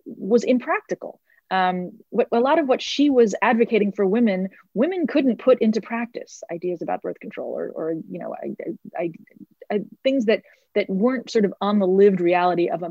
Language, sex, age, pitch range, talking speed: English, female, 30-49, 185-250 Hz, 195 wpm